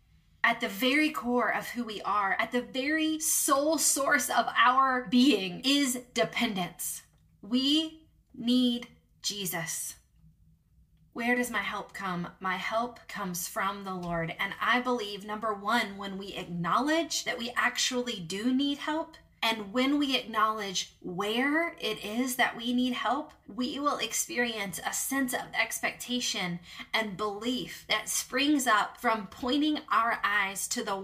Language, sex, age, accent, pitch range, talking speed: English, female, 20-39, American, 185-250 Hz, 145 wpm